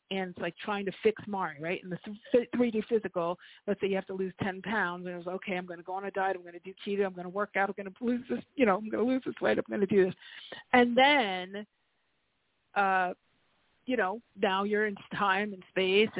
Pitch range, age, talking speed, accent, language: 180-210 Hz, 50-69, 255 wpm, American, English